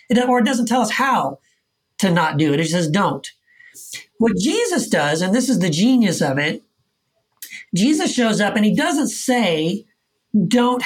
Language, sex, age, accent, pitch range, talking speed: English, male, 40-59, American, 180-245 Hz, 180 wpm